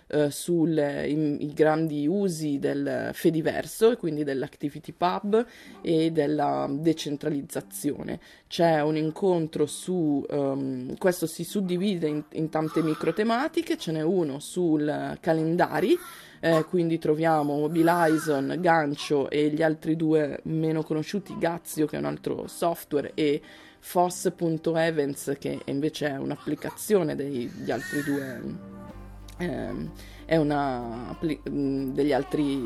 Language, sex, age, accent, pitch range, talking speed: Italian, female, 20-39, native, 140-165 Hz, 110 wpm